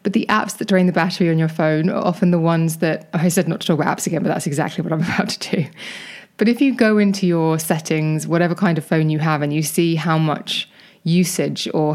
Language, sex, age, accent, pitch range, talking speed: English, female, 20-39, British, 160-190 Hz, 255 wpm